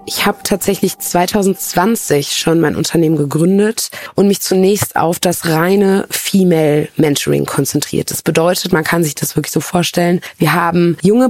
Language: German